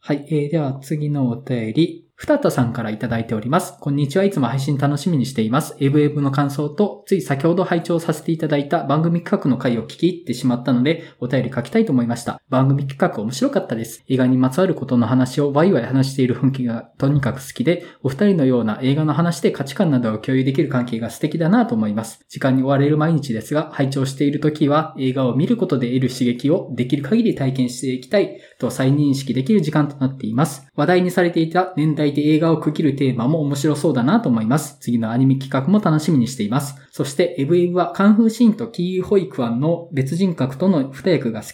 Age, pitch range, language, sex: 20-39, 130-170 Hz, Japanese, male